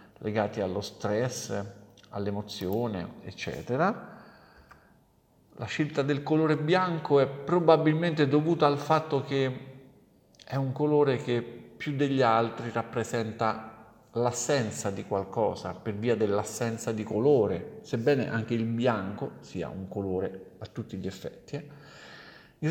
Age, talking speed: 50-69, 120 wpm